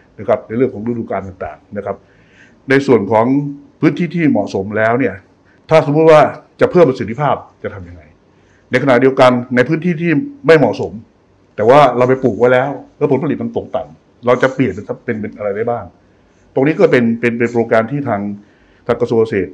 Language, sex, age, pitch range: Thai, male, 60-79, 100-140 Hz